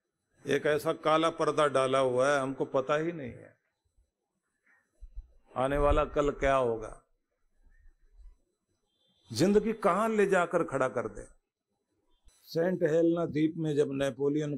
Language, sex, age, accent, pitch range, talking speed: Hindi, male, 50-69, native, 130-180 Hz, 125 wpm